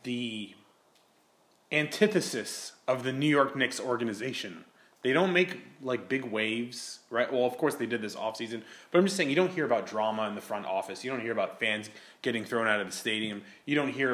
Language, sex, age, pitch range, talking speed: English, male, 20-39, 110-140 Hz, 210 wpm